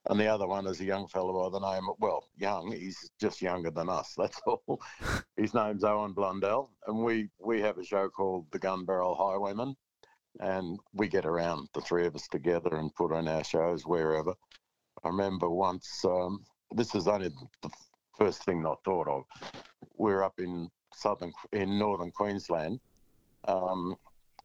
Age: 60-79